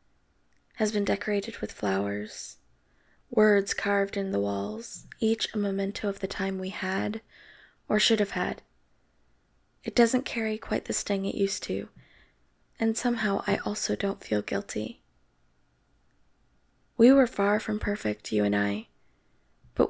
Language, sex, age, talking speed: English, female, 20-39, 140 wpm